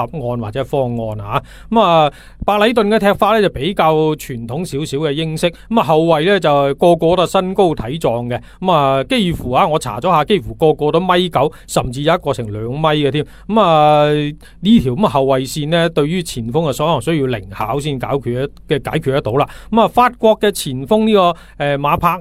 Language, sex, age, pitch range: Chinese, male, 30-49, 130-180 Hz